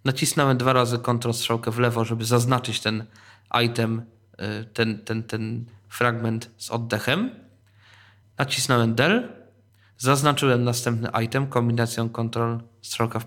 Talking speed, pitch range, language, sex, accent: 120 wpm, 110-135 Hz, Polish, male, native